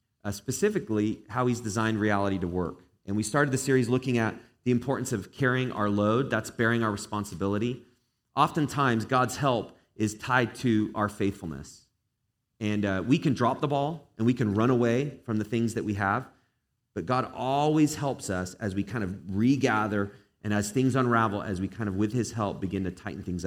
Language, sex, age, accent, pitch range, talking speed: English, male, 30-49, American, 100-130 Hz, 195 wpm